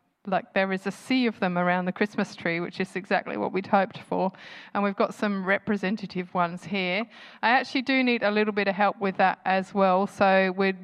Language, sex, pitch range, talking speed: English, female, 185-210 Hz, 220 wpm